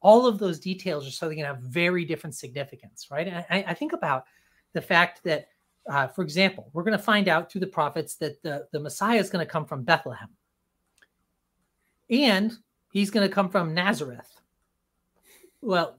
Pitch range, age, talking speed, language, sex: 165-225 Hz, 30-49, 190 wpm, English, male